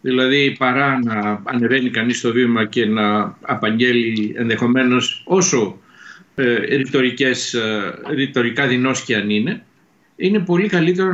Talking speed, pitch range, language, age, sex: 110 wpm, 125-170 Hz, Greek, 60-79, male